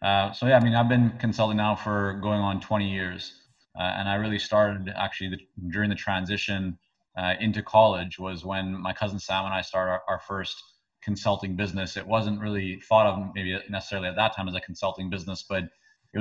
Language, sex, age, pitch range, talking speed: English, male, 30-49, 95-105 Hz, 205 wpm